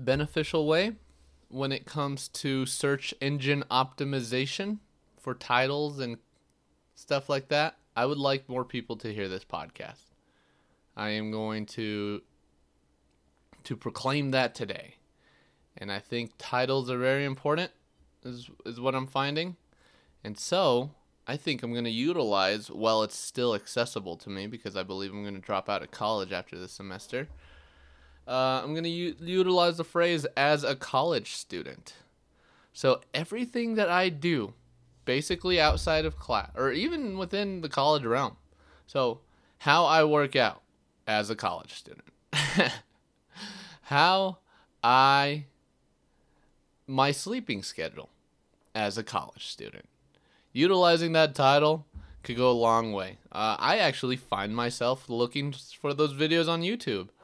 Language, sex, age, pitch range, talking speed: English, male, 20-39, 105-155 Hz, 140 wpm